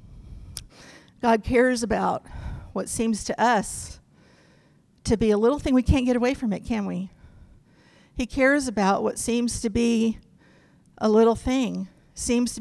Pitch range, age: 190-235 Hz, 50-69